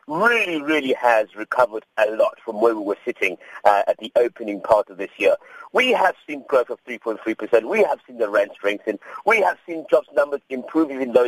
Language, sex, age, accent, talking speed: English, male, 50-69, British, 205 wpm